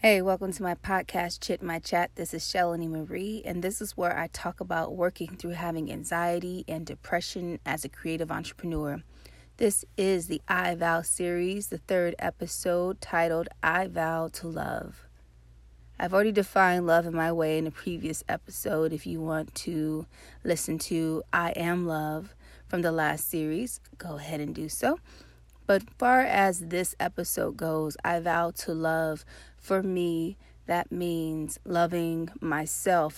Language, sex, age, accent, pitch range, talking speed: English, female, 30-49, American, 155-175 Hz, 160 wpm